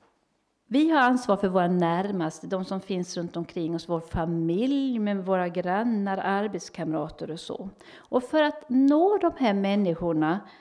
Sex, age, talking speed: female, 50-69, 155 wpm